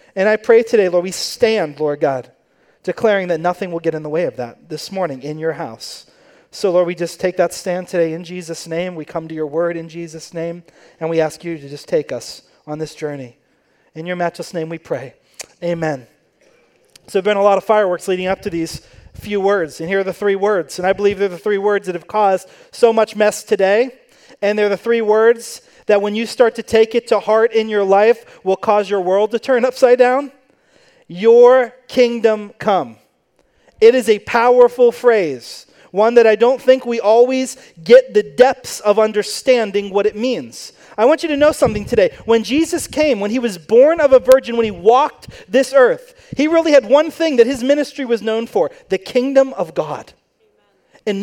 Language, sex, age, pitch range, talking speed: English, male, 30-49, 190-260 Hz, 210 wpm